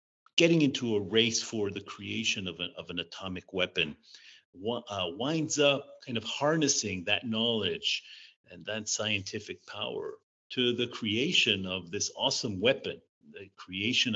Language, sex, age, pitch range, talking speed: English, male, 40-59, 95-125 Hz, 150 wpm